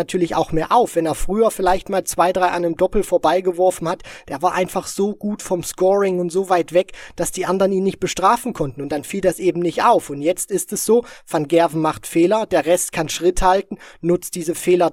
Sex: male